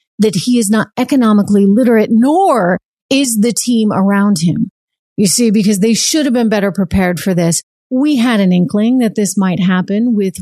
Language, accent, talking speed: English, American, 185 wpm